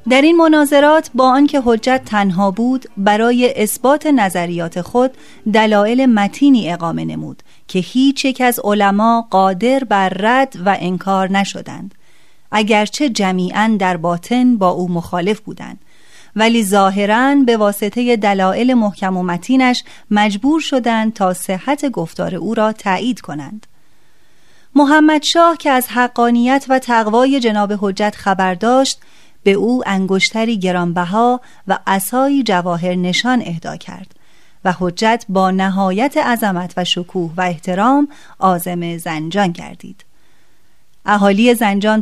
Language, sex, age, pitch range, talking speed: Persian, female, 30-49, 185-250 Hz, 125 wpm